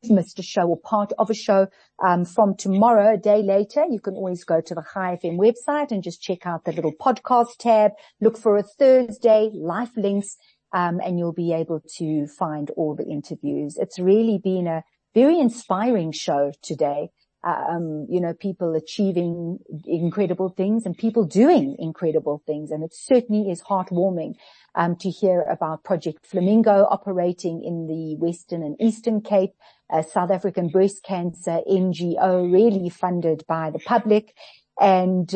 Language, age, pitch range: English, 50-69, 165-205 Hz